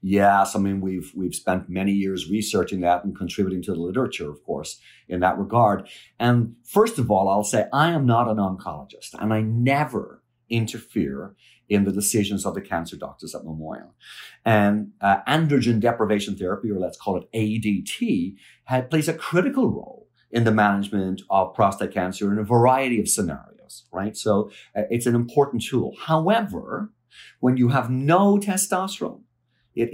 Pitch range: 100-135 Hz